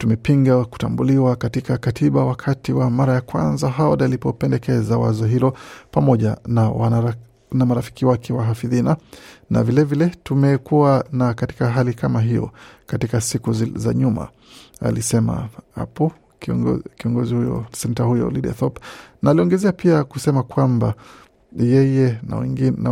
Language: Swahili